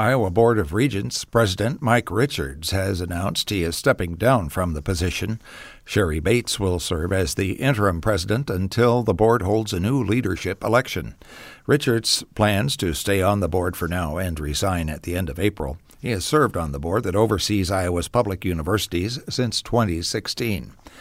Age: 60-79